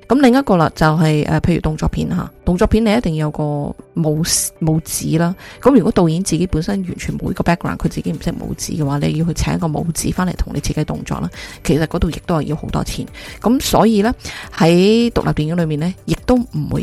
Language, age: Chinese, 20-39